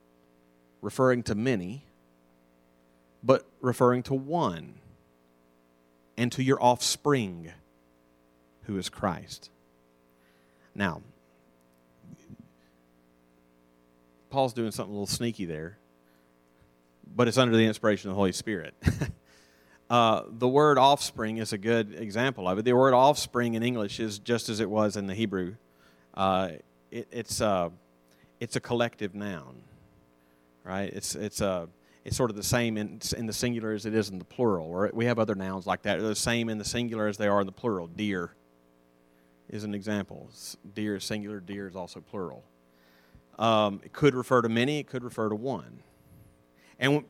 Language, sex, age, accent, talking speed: English, male, 30-49, American, 155 wpm